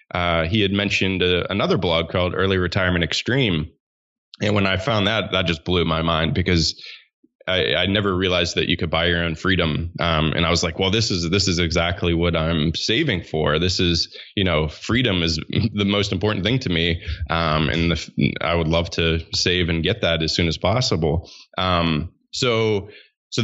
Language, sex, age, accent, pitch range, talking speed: English, male, 20-39, American, 80-95 Hz, 195 wpm